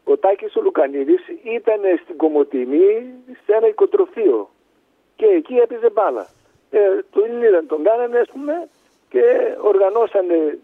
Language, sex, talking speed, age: Greek, male, 135 wpm, 50-69